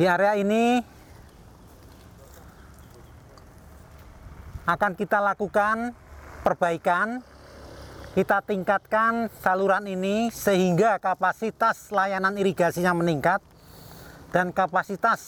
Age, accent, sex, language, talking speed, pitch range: 40-59, native, male, Indonesian, 70 wpm, 155-215 Hz